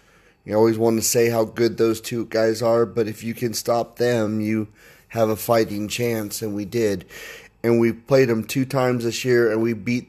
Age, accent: 30-49, American